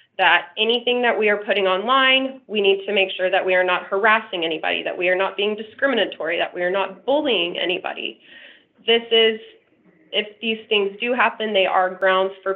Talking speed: 195 wpm